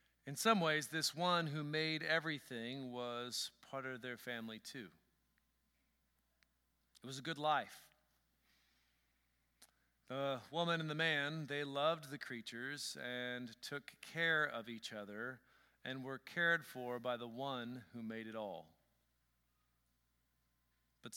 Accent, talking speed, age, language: American, 130 wpm, 40-59, English